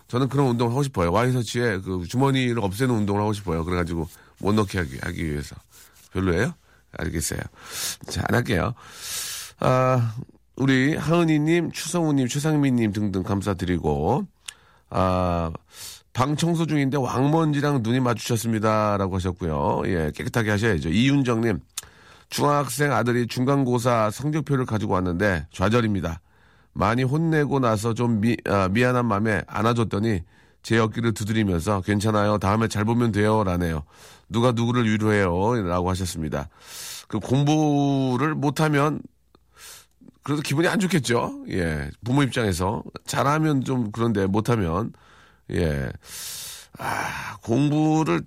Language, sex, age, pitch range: Korean, male, 40-59, 100-140 Hz